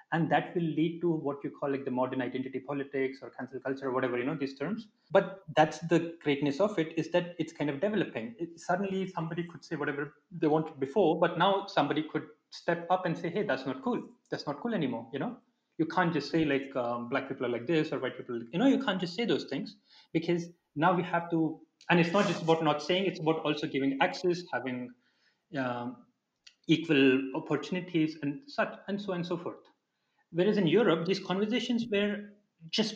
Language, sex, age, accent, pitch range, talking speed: Hindi, male, 30-49, native, 140-185 Hz, 220 wpm